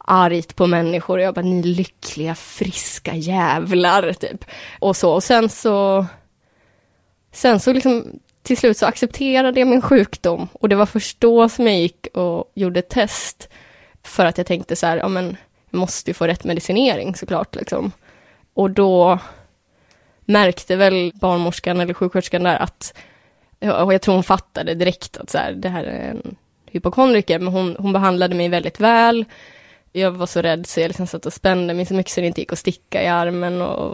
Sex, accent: female, Swedish